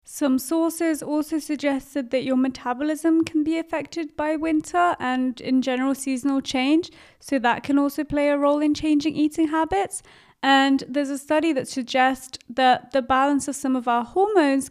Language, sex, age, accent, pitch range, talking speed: English, female, 30-49, British, 245-290 Hz, 170 wpm